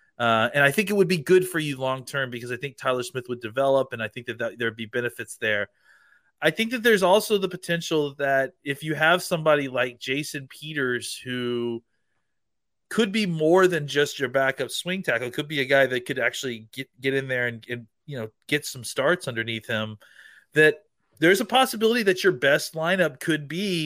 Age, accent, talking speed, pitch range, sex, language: 30-49, American, 210 wpm, 125-160 Hz, male, English